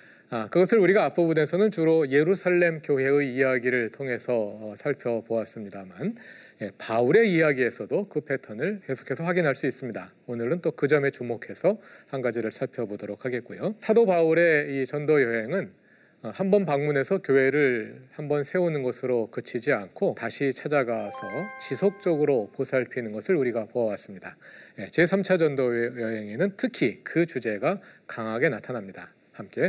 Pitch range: 125-180 Hz